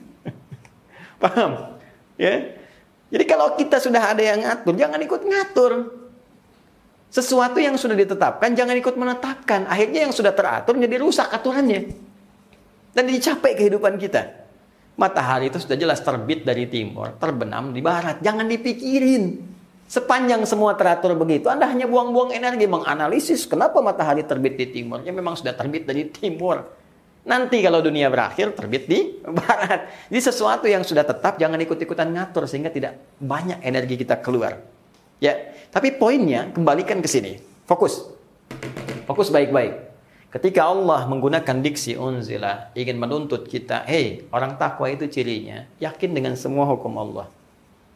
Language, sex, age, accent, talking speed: Indonesian, male, 40-59, native, 135 wpm